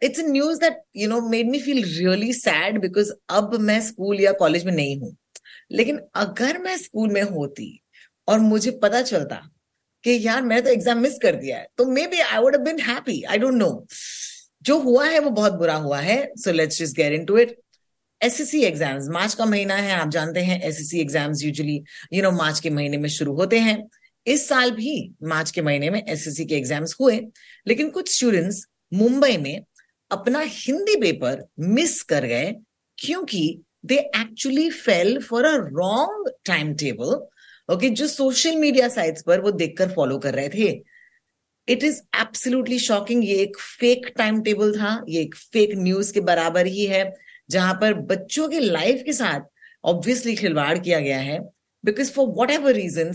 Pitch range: 175-255 Hz